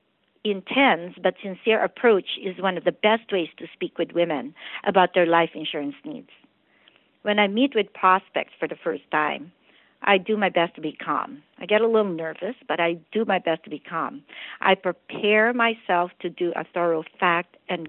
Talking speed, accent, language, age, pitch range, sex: 190 wpm, American, English, 50-69, 170-215 Hz, female